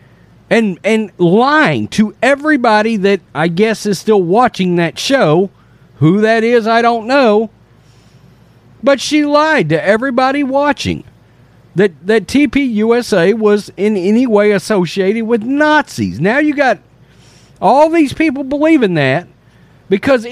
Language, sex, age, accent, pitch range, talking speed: English, male, 50-69, American, 160-235 Hz, 130 wpm